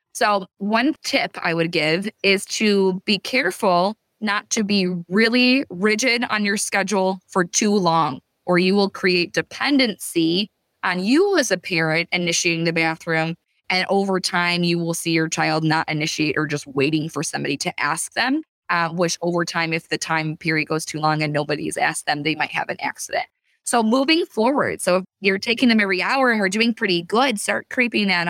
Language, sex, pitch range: English, female, 175-225 Hz